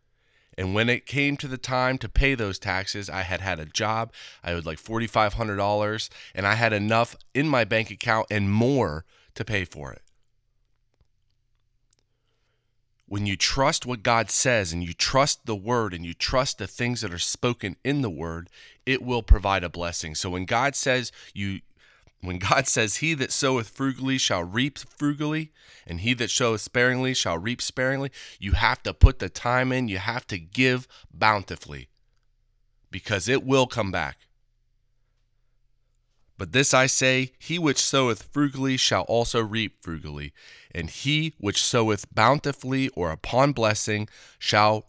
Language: English